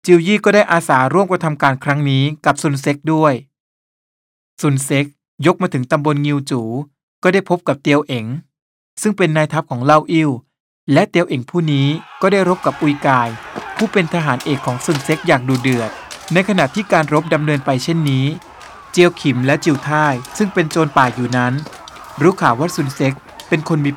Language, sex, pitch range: Thai, male, 135-170 Hz